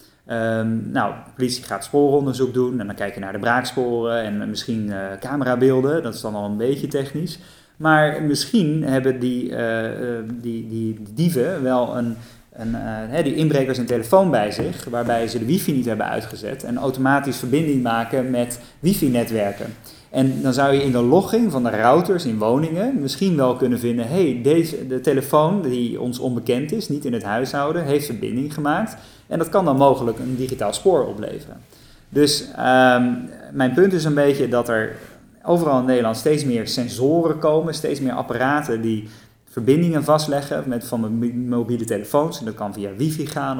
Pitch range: 115-145 Hz